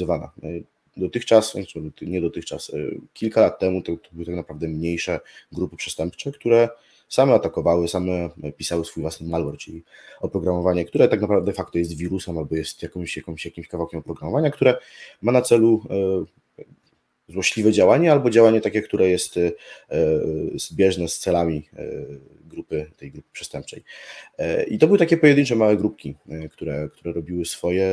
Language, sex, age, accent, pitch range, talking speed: Polish, male, 20-39, native, 80-110 Hz, 140 wpm